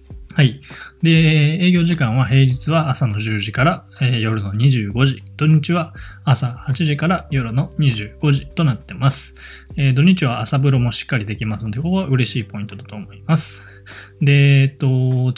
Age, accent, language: 20-39, native, Japanese